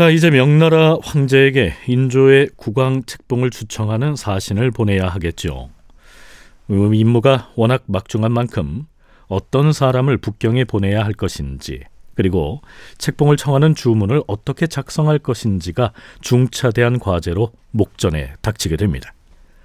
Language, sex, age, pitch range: Korean, male, 40-59, 100-145 Hz